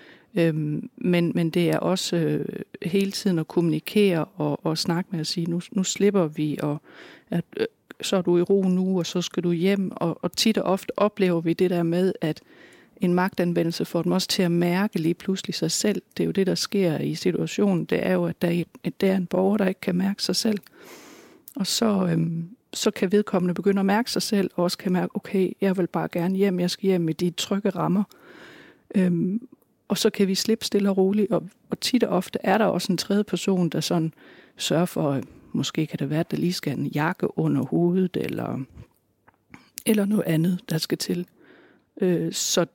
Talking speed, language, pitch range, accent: 205 wpm, Danish, 170-200 Hz, native